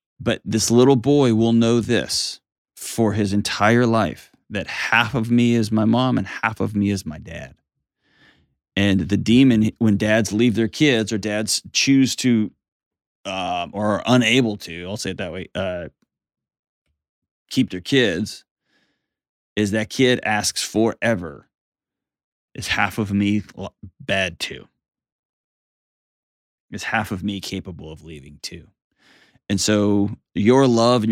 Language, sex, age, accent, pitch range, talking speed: English, male, 30-49, American, 95-115 Hz, 145 wpm